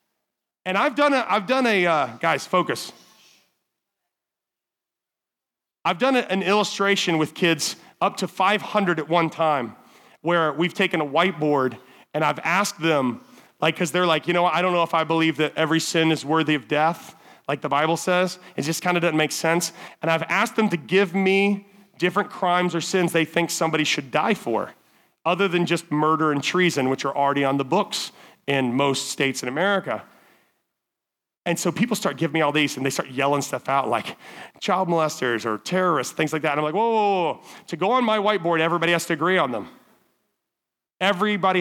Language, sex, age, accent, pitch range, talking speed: English, male, 30-49, American, 155-190 Hz, 195 wpm